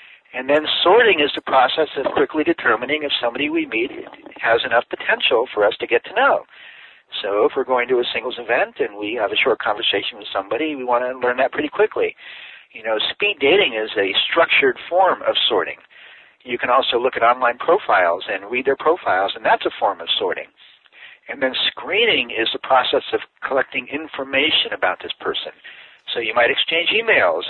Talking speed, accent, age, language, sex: 195 wpm, American, 50-69, English, male